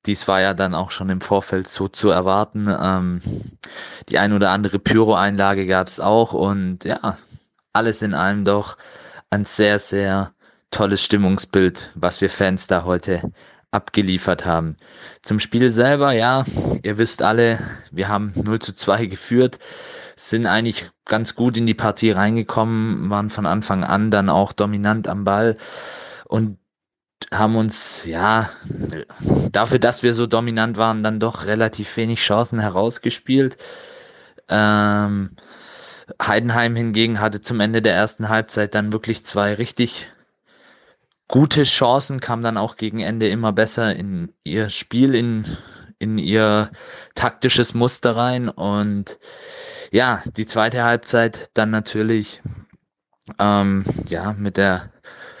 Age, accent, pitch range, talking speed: 20-39, German, 100-115 Hz, 135 wpm